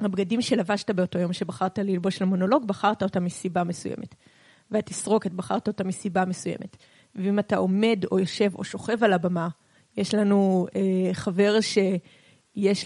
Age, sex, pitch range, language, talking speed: 20-39, female, 185-215 Hz, Hebrew, 140 wpm